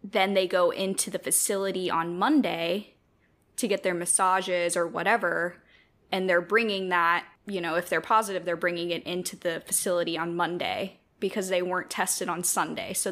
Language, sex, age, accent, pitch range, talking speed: English, female, 10-29, American, 175-200 Hz, 175 wpm